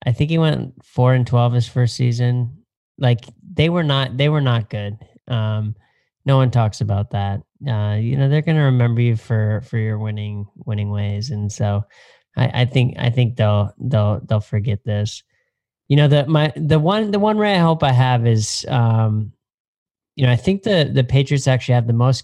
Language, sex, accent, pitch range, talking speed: English, male, American, 110-135 Hz, 205 wpm